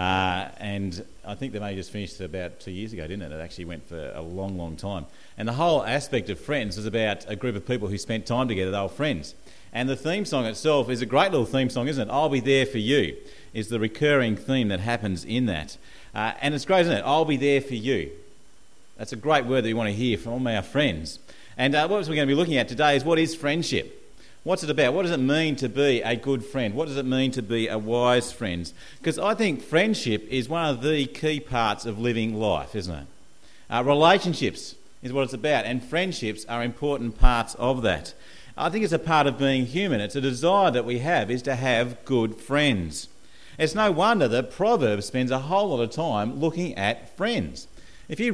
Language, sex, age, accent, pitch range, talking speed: English, male, 40-59, Australian, 110-145 Hz, 235 wpm